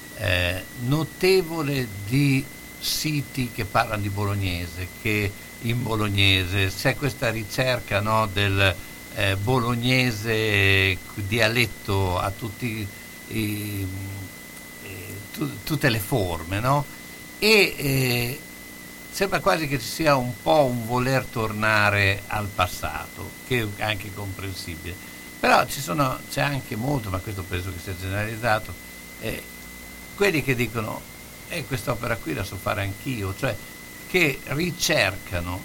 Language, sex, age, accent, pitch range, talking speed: Italian, male, 60-79, native, 95-125 Hz, 115 wpm